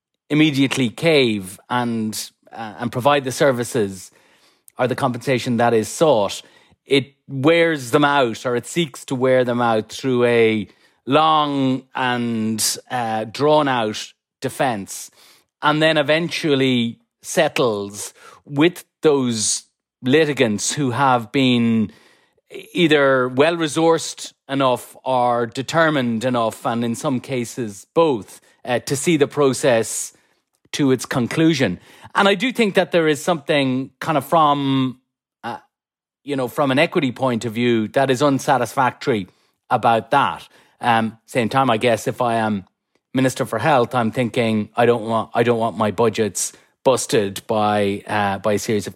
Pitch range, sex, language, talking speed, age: 115-150 Hz, male, English, 140 wpm, 30-49